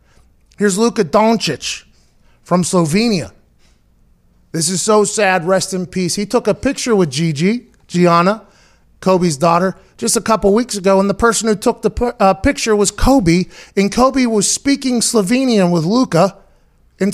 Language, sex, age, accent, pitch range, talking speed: English, male, 30-49, American, 160-220 Hz, 155 wpm